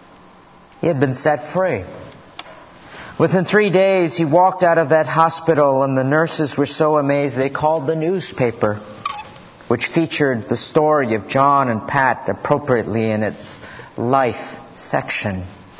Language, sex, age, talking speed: English, male, 50-69, 140 wpm